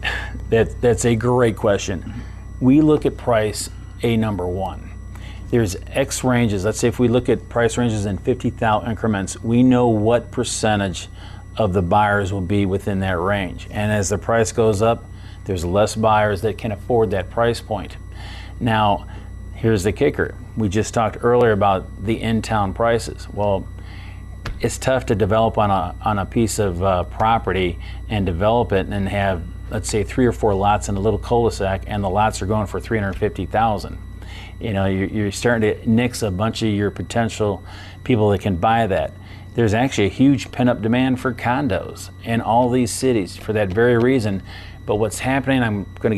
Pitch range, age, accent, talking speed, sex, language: 95-115 Hz, 40-59, American, 180 wpm, male, English